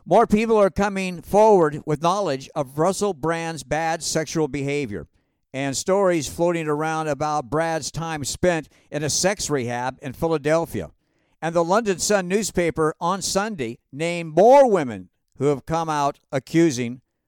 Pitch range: 140-185 Hz